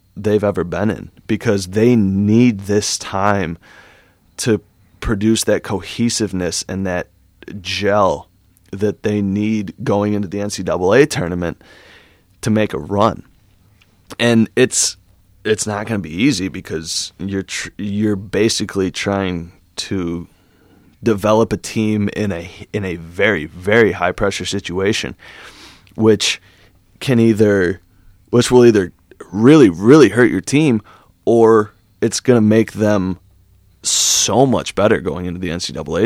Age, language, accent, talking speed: 20-39, English, American, 130 wpm